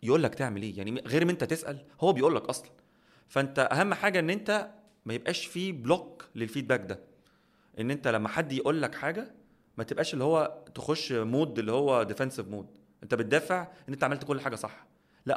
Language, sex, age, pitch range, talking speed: Arabic, male, 30-49, 120-165 Hz, 195 wpm